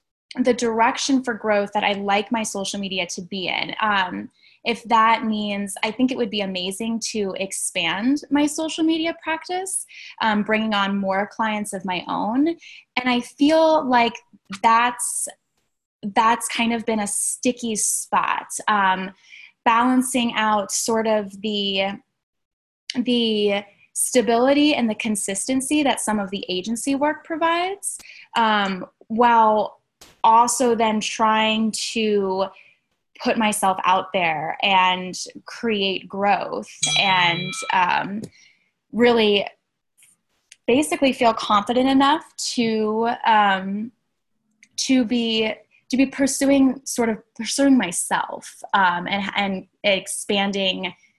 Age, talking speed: 10-29, 120 wpm